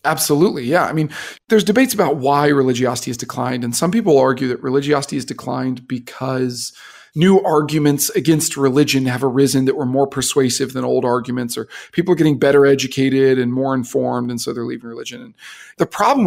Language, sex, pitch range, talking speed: English, male, 125-165 Hz, 185 wpm